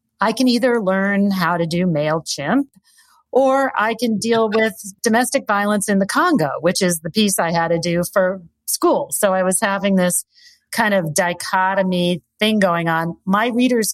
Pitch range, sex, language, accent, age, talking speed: 165-215 Hz, female, English, American, 40-59, 180 wpm